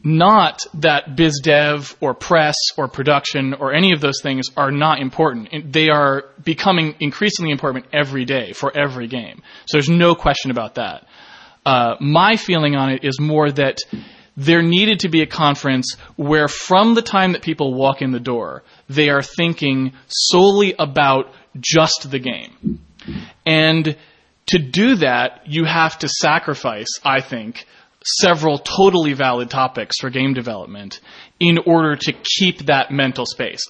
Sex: male